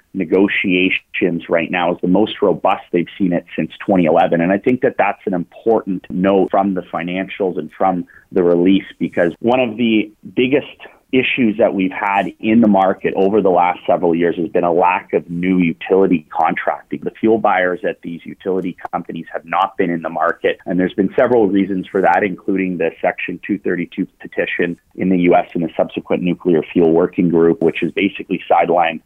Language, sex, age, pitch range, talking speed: English, male, 30-49, 85-100 Hz, 190 wpm